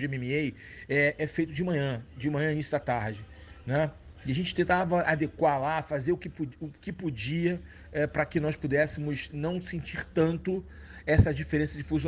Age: 40-59